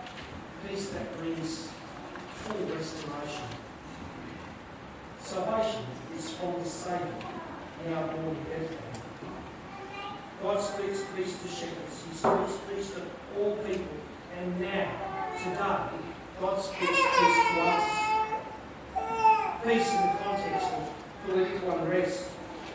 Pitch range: 180-265 Hz